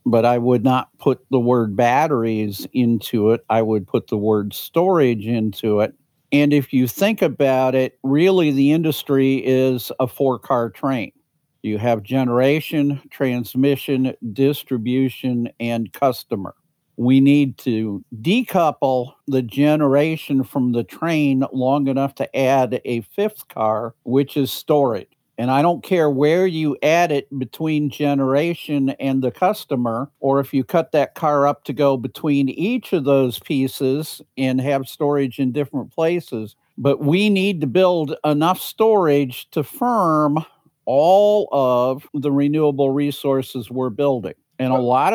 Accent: American